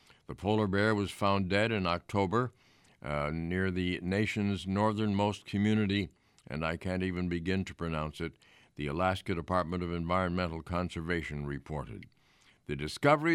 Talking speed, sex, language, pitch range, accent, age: 140 wpm, male, English, 80-105 Hz, American, 60-79